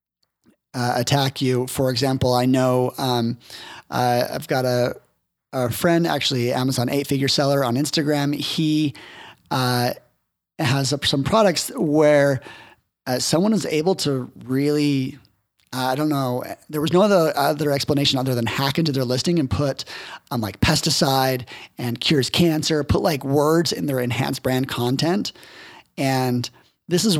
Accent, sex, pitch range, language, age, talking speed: American, male, 125-155 Hz, English, 30-49, 150 wpm